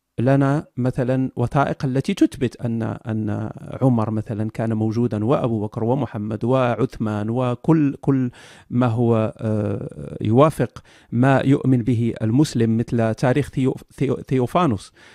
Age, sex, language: 40-59, male, Arabic